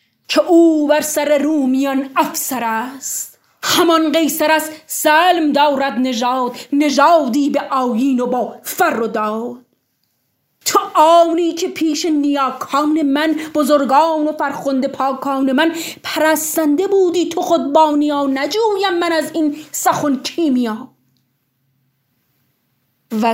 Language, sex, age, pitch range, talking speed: Persian, female, 30-49, 230-300 Hz, 115 wpm